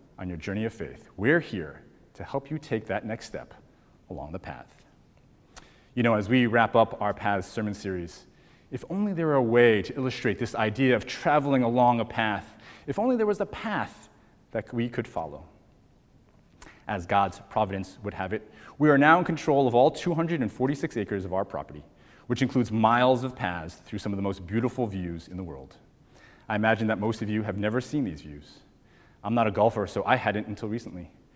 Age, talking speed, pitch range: 30-49, 200 wpm, 105-140 Hz